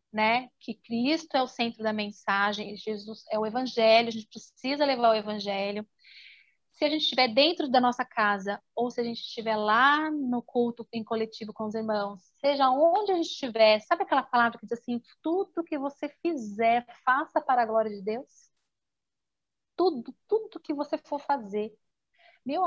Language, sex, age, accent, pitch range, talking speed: Portuguese, female, 30-49, Brazilian, 220-290 Hz, 175 wpm